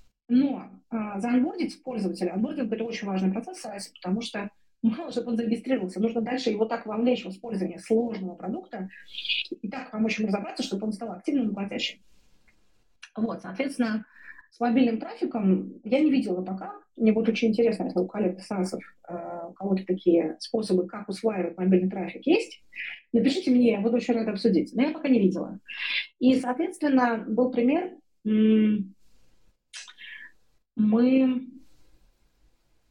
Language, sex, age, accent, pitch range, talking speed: Russian, female, 30-49, native, 200-255 Hz, 145 wpm